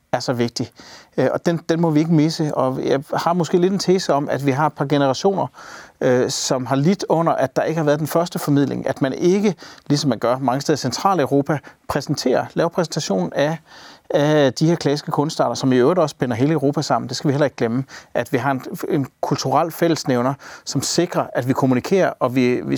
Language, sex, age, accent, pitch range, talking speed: Danish, male, 40-59, native, 130-160 Hz, 225 wpm